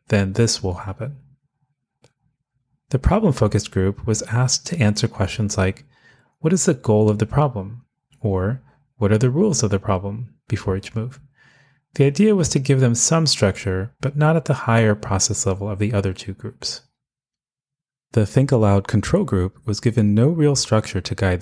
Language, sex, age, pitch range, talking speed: English, male, 30-49, 95-140 Hz, 175 wpm